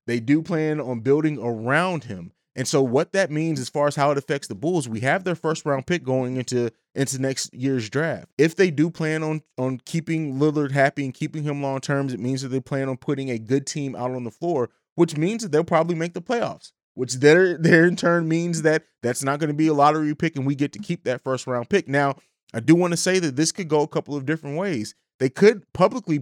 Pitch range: 130-160 Hz